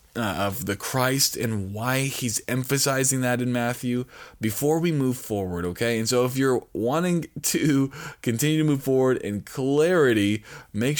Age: 20-39